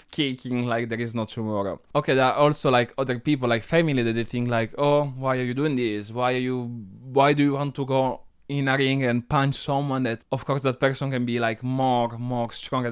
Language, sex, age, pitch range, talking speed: English, male, 20-39, 115-145 Hz, 235 wpm